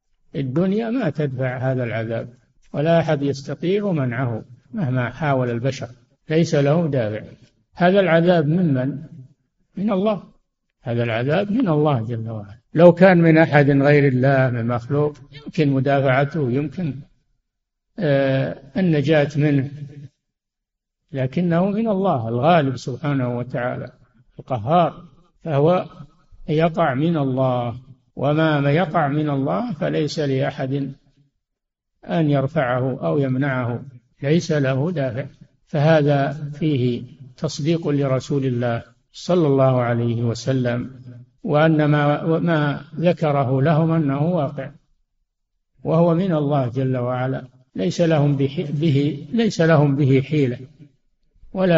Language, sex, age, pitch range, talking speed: Arabic, male, 60-79, 130-160 Hz, 105 wpm